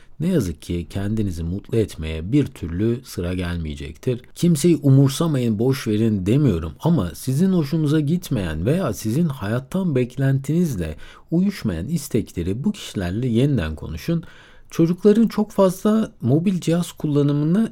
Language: Turkish